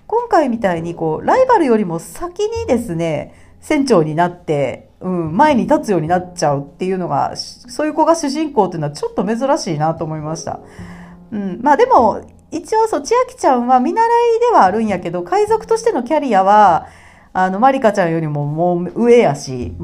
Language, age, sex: Japanese, 40-59, female